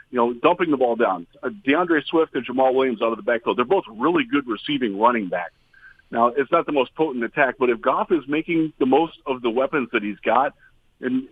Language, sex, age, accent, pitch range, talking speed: English, male, 40-59, American, 120-180 Hz, 230 wpm